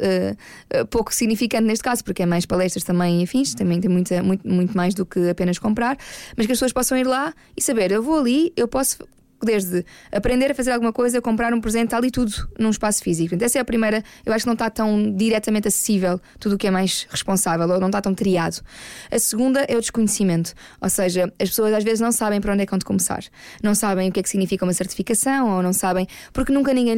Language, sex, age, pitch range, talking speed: Portuguese, female, 20-39, 195-250 Hz, 240 wpm